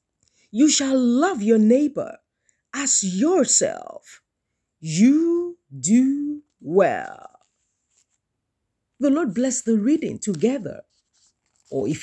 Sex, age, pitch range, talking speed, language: female, 40-59, 235-335 Hz, 90 wpm, English